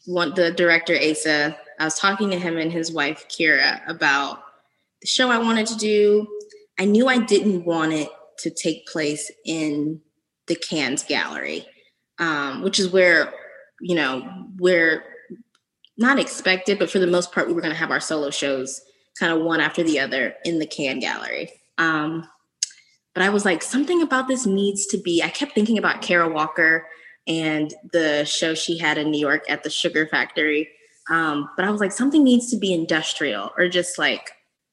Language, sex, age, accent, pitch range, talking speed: English, female, 20-39, American, 155-200 Hz, 180 wpm